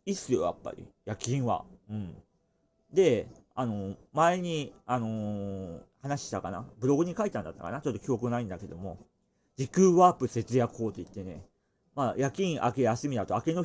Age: 40-59